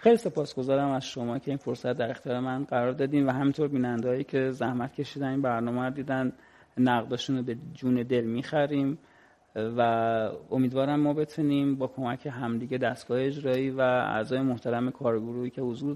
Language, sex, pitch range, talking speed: Persian, male, 125-145 Hz, 160 wpm